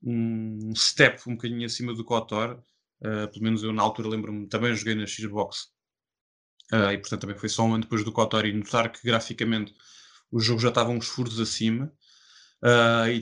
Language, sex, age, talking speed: Portuguese, male, 20-39, 175 wpm